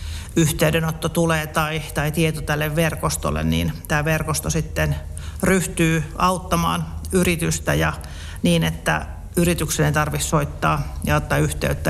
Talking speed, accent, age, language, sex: 120 wpm, native, 40-59, Finnish, male